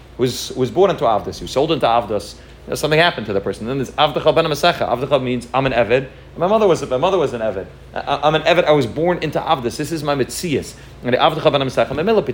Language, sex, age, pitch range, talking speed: English, male, 30-49, 110-145 Hz, 245 wpm